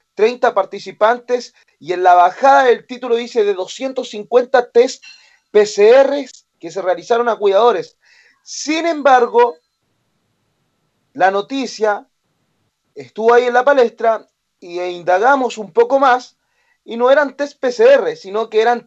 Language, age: Spanish, 30-49